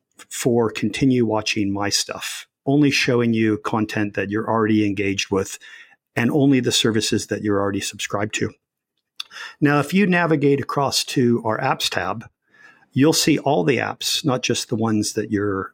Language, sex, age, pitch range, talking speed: English, male, 50-69, 110-140 Hz, 165 wpm